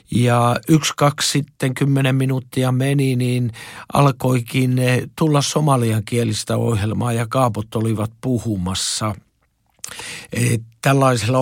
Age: 50-69